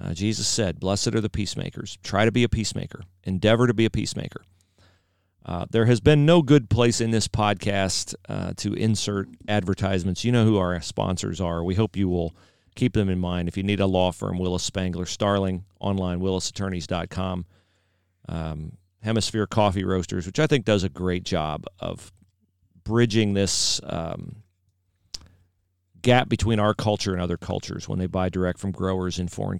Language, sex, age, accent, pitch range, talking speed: English, male, 40-59, American, 90-105 Hz, 175 wpm